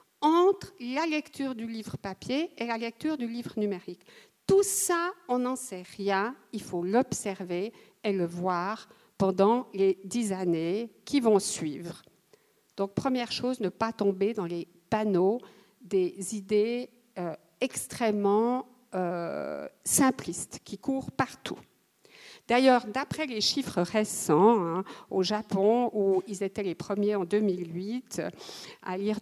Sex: female